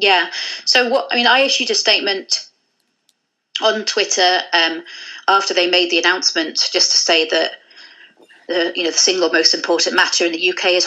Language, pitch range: English, 170-215 Hz